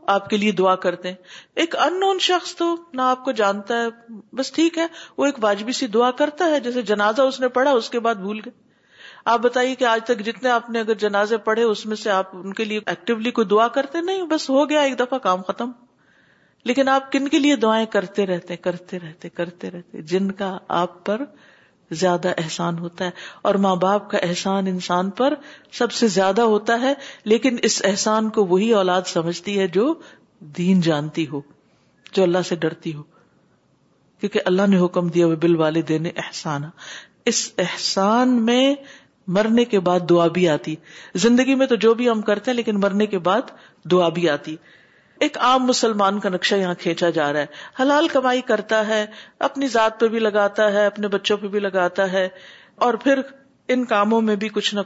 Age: 50-69